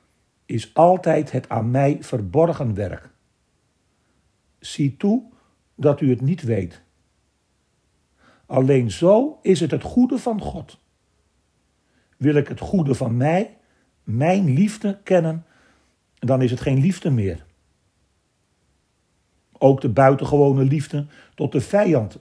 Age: 50-69